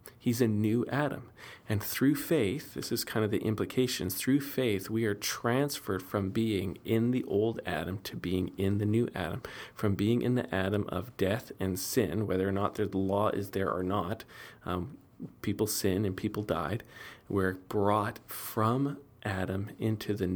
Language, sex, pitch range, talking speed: English, male, 100-120 Hz, 175 wpm